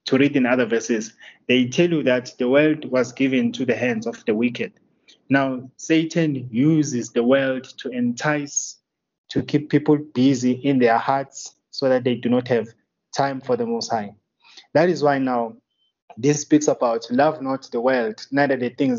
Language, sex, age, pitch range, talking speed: English, male, 20-39, 120-145 Hz, 185 wpm